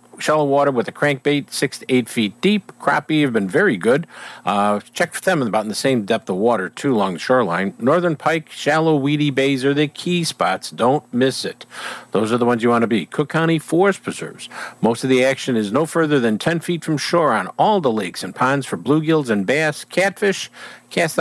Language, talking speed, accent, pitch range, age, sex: English, 220 wpm, American, 120-160 Hz, 50-69, male